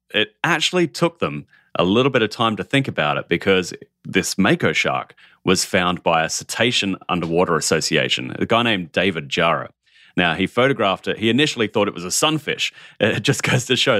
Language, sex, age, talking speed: English, male, 30-49, 195 wpm